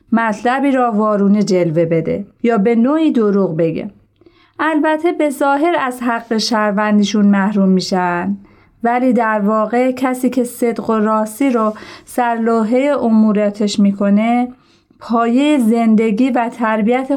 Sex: female